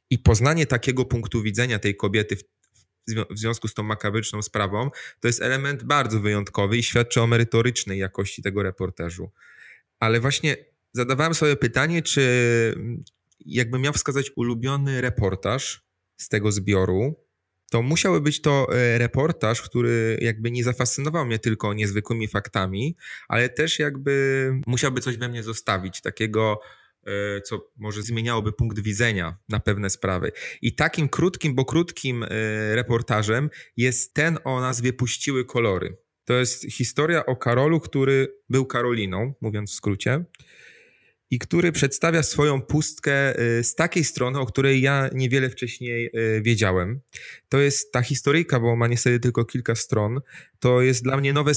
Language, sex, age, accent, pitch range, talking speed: Polish, male, 20-39, native, 110-135 Hz, 140 wpm